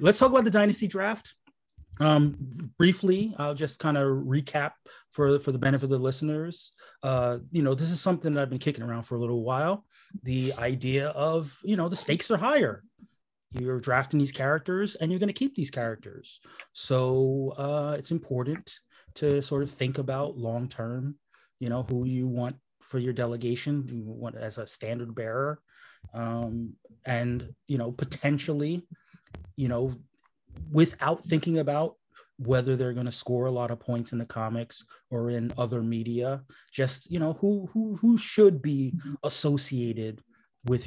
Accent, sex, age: American, male, 30-49